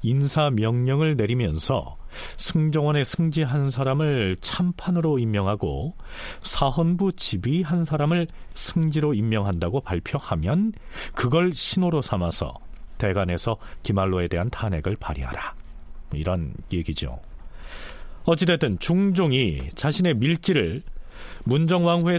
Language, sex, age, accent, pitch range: Korean, male, 40-59, native, 100-160 Hz